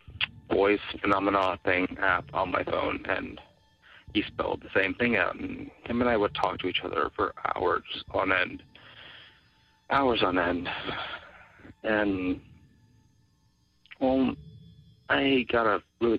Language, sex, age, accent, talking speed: English, male, 40-59, American, 135 wpm